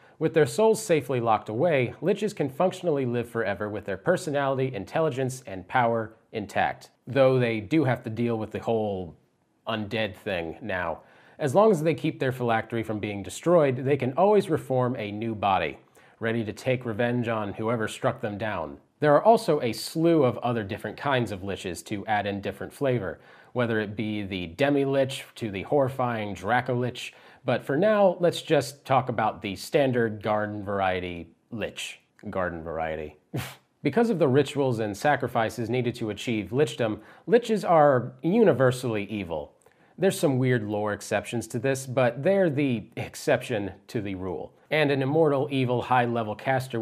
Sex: male